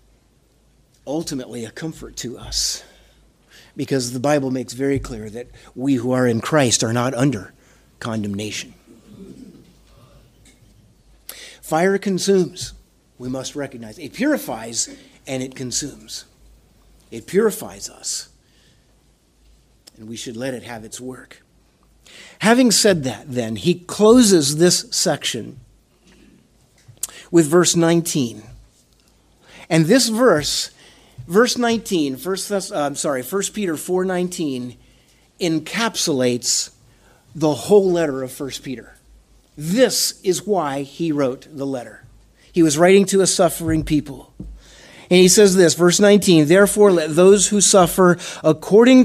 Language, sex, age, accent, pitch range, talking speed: English, male, 50-69, American, 125-185 Hz, 120 wpm